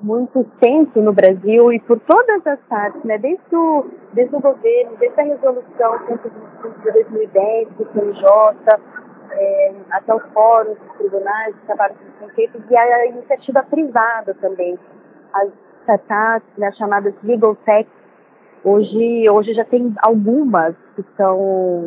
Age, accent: 20-39, Brazilian